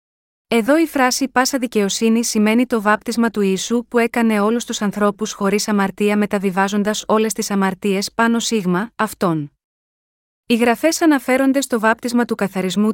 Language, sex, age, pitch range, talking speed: Greek, female, 20-39, 205-245 Hz, 145 wpm